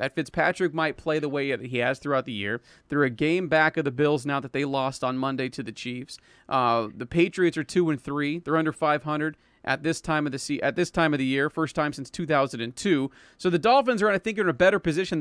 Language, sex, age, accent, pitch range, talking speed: English, male, 40-59, American, 135-165 Hz, 255 wpm